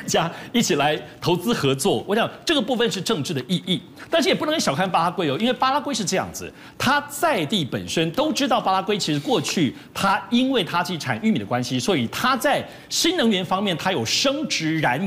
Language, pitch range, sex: Chinese, 160-240 Hz, male